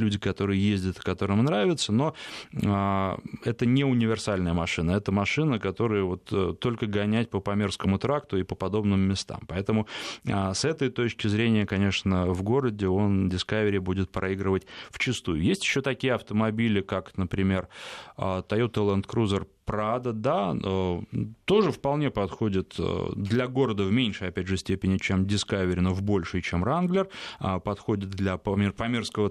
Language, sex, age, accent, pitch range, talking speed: Russian, male, 20-39, native, 95-115 Hz, 140 wpm